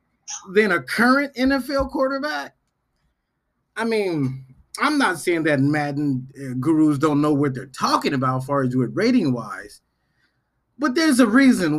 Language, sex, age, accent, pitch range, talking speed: English, male, 30-49, American, 140-205 Hz, 135 wpm